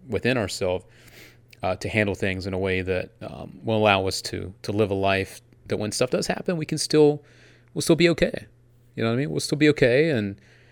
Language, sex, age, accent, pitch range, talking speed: English, male, 30-49, American, 110-135 Hz, 230 wpm